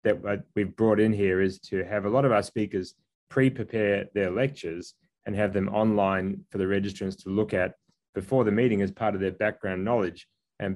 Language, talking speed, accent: English, 200 wpm, Australian